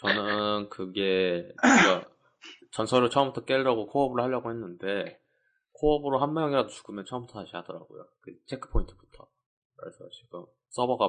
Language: Korean